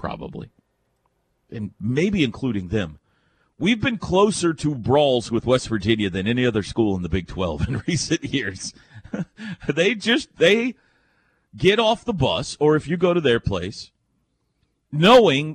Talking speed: 150 wpm